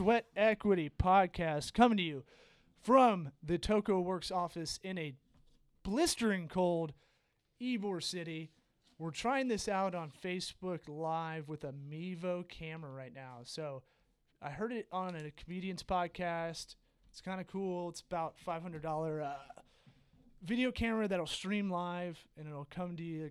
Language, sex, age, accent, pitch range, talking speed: English, male, 30-49, American, 150-185 Hz, 145 wpm